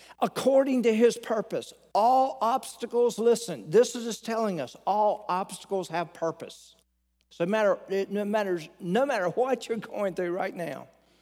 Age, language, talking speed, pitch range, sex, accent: 50-69, English, 150 wpm, 170-220 Hz, male, American